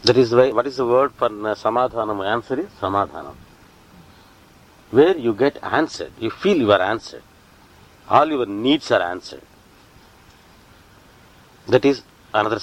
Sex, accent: male, Indian